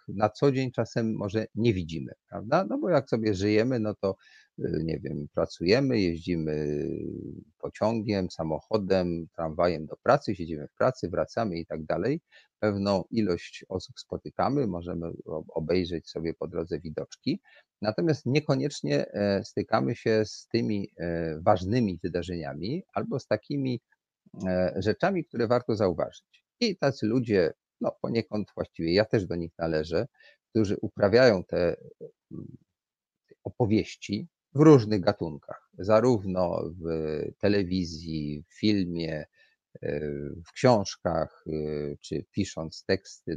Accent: native